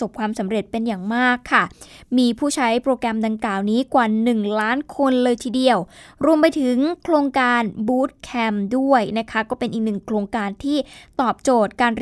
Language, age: Thai, 20-39